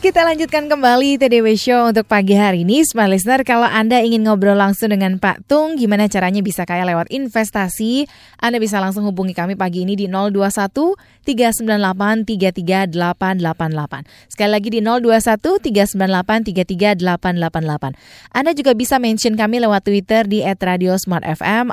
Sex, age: female, 20-39